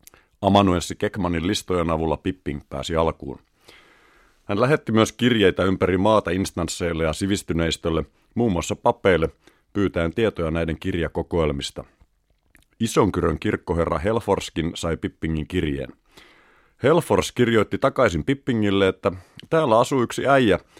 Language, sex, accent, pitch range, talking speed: Finnish, male, native, 80-105 Hz, 110 wpm